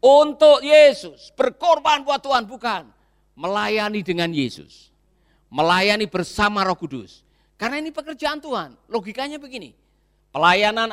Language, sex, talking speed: Indonesian, male, 110 wpm